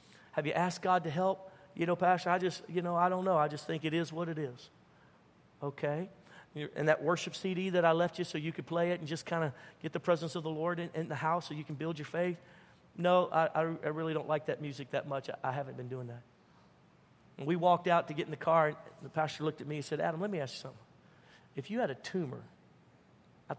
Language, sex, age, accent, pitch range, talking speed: English, male, 50-69, American, 145-175 Hz, 260 wpm